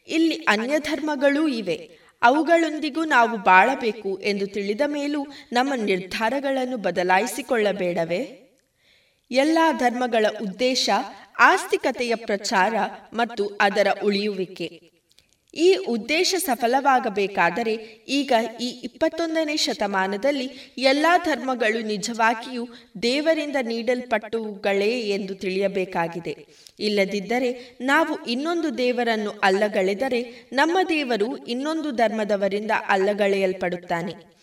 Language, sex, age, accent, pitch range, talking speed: Kannada, female, 20-39, native, 205-280 Hz, 80 wpm